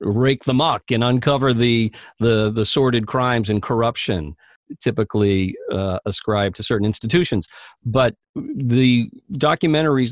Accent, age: American, 50-69